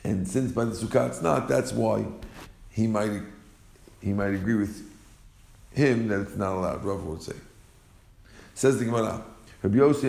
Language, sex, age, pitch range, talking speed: English, male, 50-69, 100-125 Hz, 160 wpm